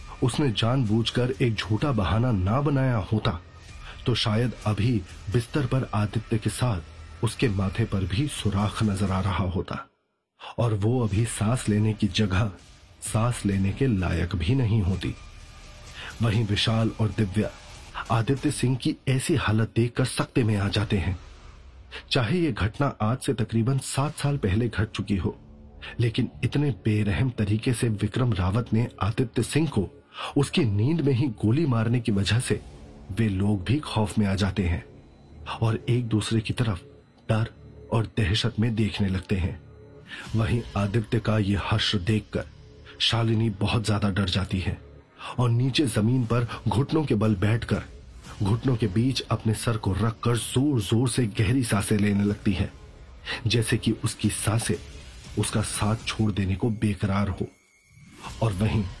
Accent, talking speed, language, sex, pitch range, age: native, 155 wpm, Hindi, male, 100-120 Hz, 30-49